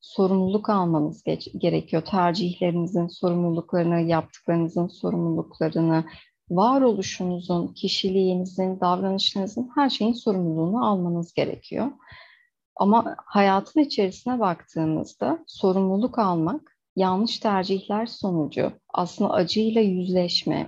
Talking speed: 80 wpm